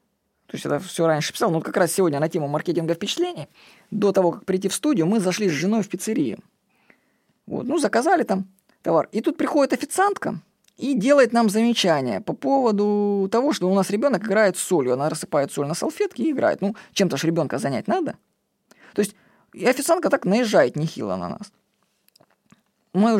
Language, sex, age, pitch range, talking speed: Russian, female, 20-39, 180-230 Hz, 185 wpm